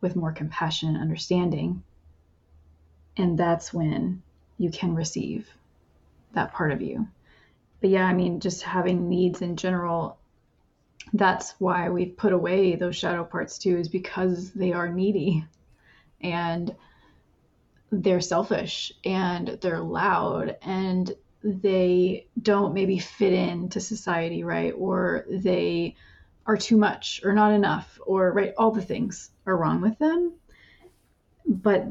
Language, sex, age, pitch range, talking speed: English, female, 30-49, 155-195 Hz, 135 wpm